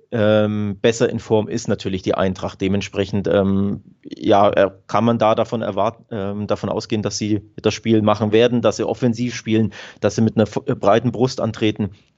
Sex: male